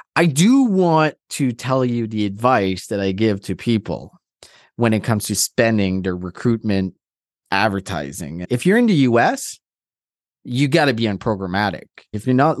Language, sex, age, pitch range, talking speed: English, male, 30-49, 95-120 Hz, 160 wpm